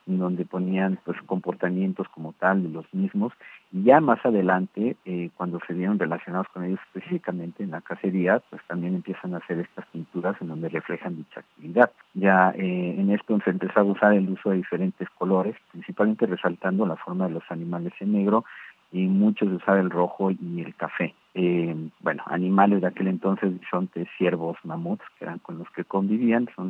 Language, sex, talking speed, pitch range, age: Spanish, male, 185 wpm, 90-105 Hz, 50-69